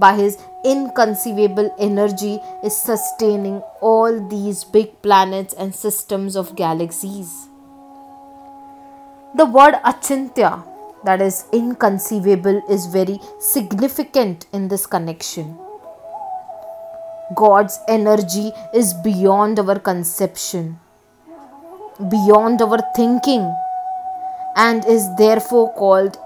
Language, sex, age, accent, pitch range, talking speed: English, female, 20-39, Indian, 200-270 Hz, 90 wpm